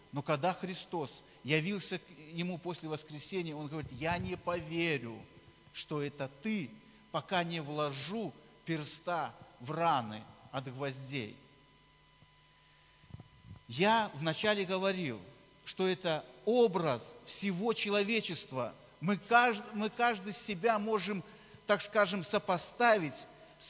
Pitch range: 160-220 Hz